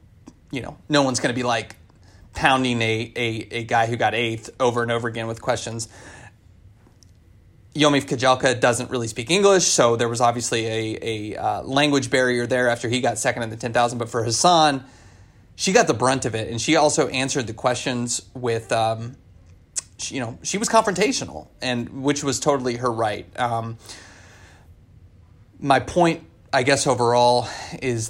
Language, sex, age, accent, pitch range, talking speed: English, male, 30-49, American, 110-125 Hz, 175 wpm